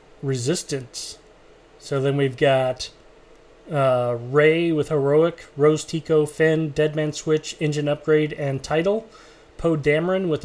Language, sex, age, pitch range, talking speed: English, male, 20-39, 150-180 Hz, 120 wpm